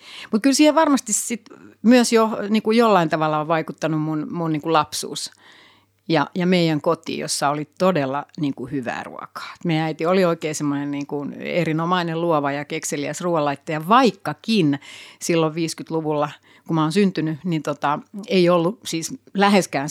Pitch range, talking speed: 150-205 Hz, 150 wpm